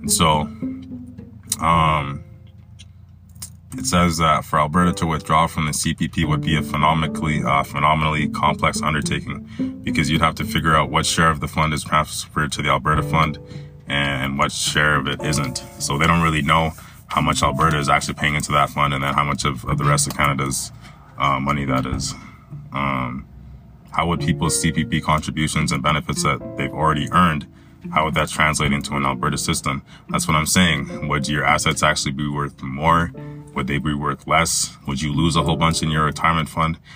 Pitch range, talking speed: 70-85 Hz, 190 wpm